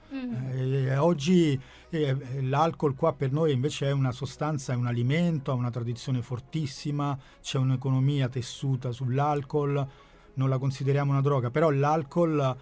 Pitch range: 125-145 Hz